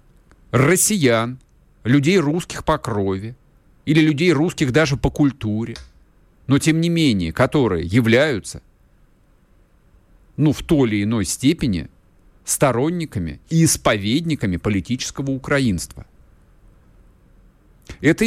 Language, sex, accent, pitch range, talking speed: Russian, male, native, 105-155 Hz, 95 wpm